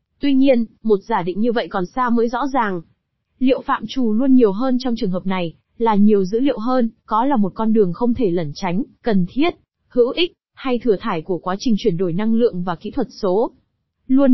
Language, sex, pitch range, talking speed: Vietnamese, female, 205-255 Hz, 230 wpm